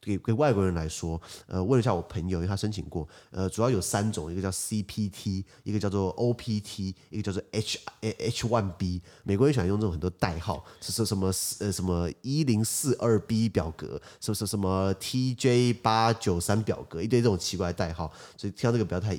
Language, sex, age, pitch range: Chinese, male, 20-39, 90-115 Hz